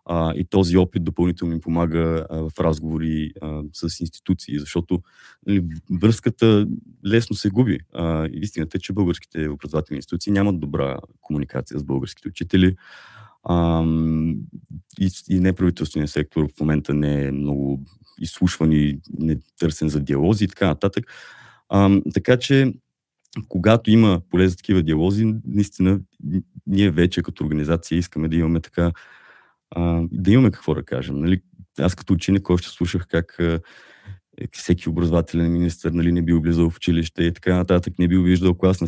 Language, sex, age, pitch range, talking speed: Bulgarian, male, 30-49, 80-100 Hz, 155 wpm